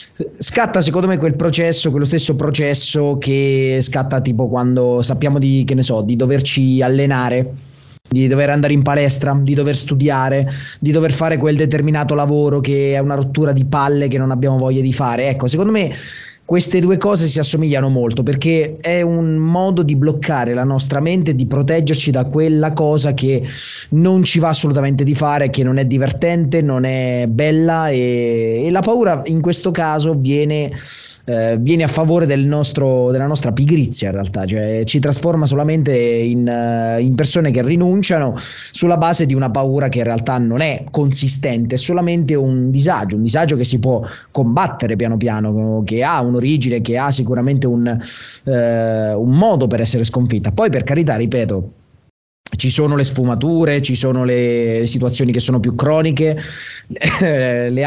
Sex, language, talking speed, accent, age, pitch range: male, Italian, 170 wpm, native, 20-39, 125-150 Hz